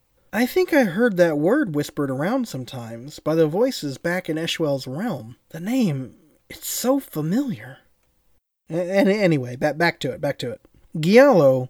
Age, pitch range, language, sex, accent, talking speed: 30-49, 135-195 Hz, English, male, American, 150 wpm